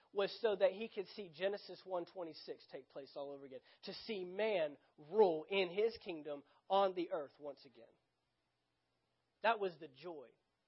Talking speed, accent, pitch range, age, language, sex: 175 wpm, American, 150-210 Hz, 40-59, English, male